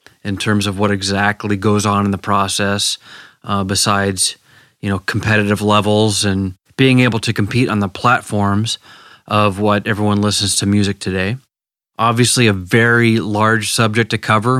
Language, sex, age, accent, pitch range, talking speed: English, male, 30-49, American, 100-115 Hz, 155 wpm